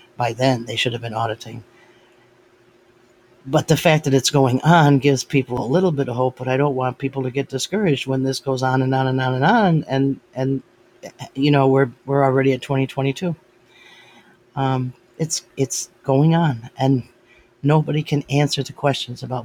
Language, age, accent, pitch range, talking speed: English, 40-59, American, 120-135 Hz, 185 wpm